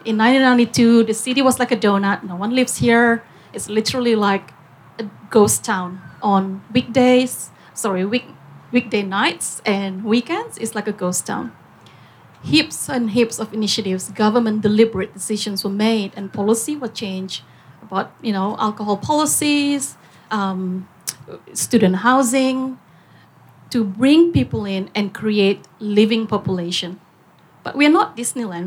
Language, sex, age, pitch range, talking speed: English, female, 30-49, 195-245 Hz, 135 wpm